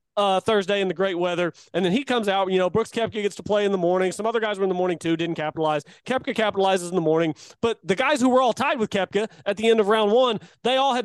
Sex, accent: male, American